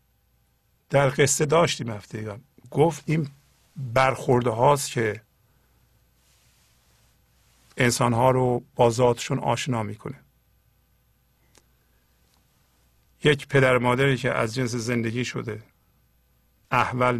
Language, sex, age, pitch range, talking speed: English, male, 50-69, 115-150 Hz, 90 wpm